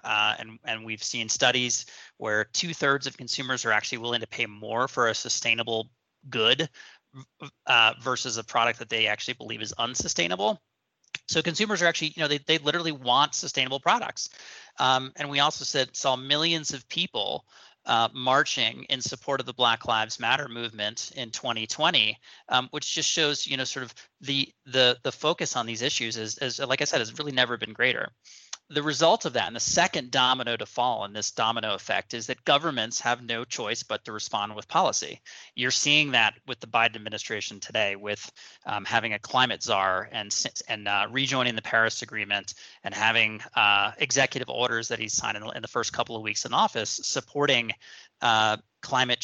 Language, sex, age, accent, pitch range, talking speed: English, male, 30-49, American, 110-140 Hz, 190 wpm